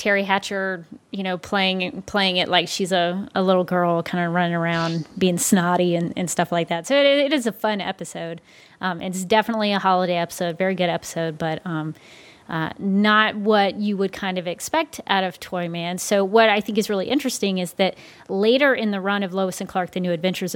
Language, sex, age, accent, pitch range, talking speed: English, female, 30-49, American, 180-210 Hz, 215 wpm